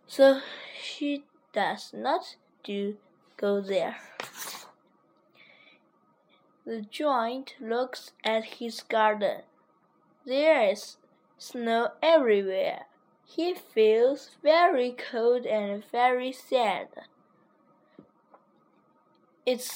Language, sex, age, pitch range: Chinese, female, 10-29, 215-275 Hz